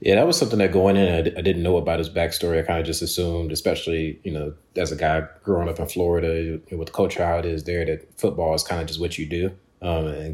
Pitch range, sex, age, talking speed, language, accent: 85-95 Hz, male, 30-49, 285 wpm, English, American